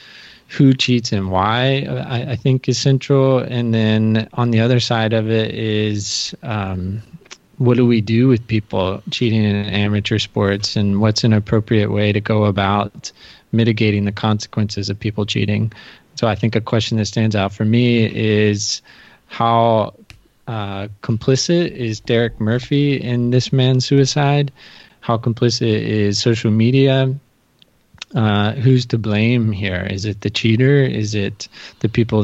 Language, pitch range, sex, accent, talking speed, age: English, 105-120 Hz, male, American, 155 wpm, 20-39